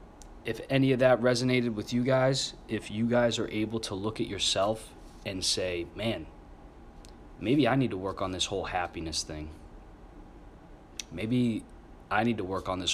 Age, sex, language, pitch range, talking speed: 20-39, male, English, 80-110 Hz, 170 wpm